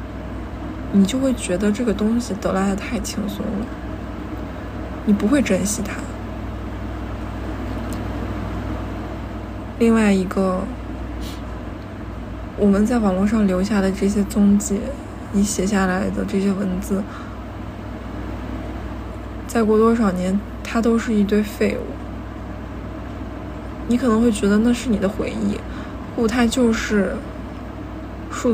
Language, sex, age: Chinese, female, 20-39